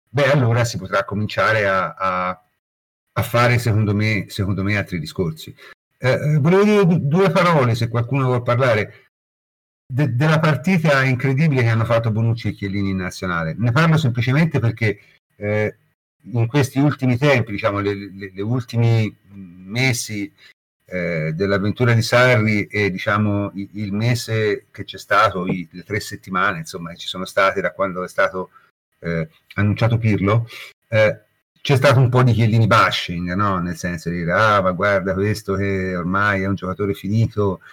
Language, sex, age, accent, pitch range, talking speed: Italian, male, 50-69, native, 95-120 Hz, 165 wpm